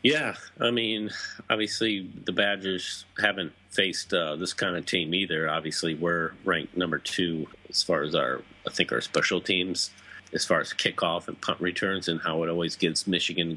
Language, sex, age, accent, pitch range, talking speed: English, male, 40-59, American, 85-100 Hz, 180 wpm